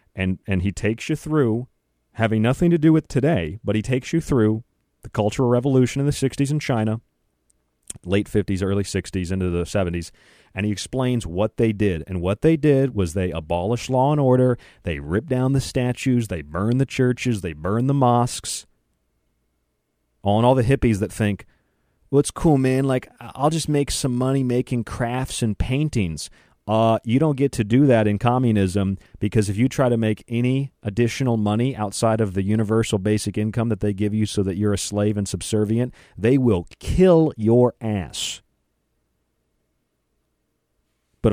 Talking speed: 180 wpm